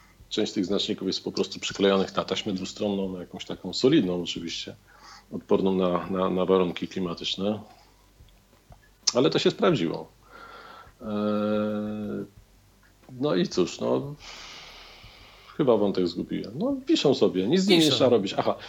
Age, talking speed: 40-59, 130 wpm